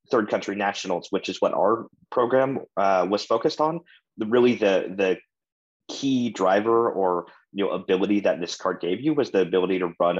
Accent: American